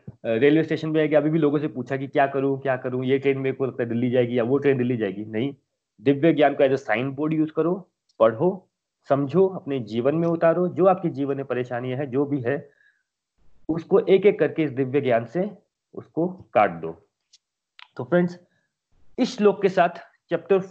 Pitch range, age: 135-165 Hz, 30-49